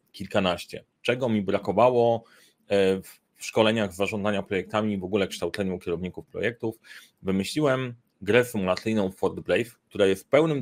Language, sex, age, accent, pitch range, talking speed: Polish, male, 30-49, native, 95-115 Hz, 120 wpm